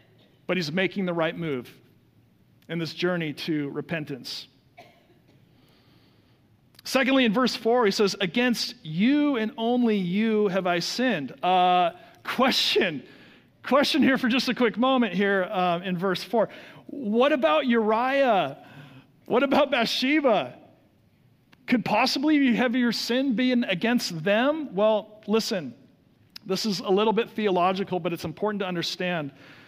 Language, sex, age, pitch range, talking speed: English, male, 40-59, 175-245 Hz, 135 wpm